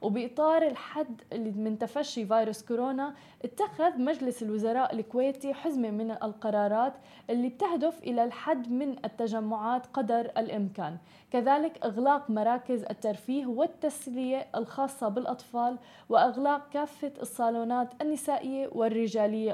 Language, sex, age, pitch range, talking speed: Arabic, female, 20-39, 220-270 Hz, 100 wpm